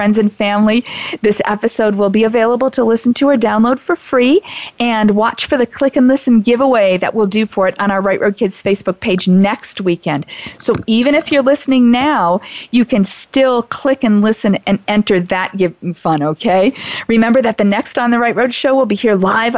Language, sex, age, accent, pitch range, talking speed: English, female, 40-59, American, 195-230 Hz, 205 wpm